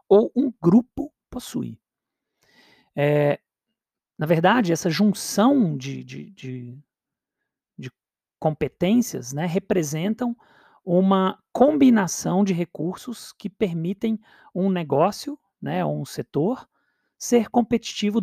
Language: Portuguese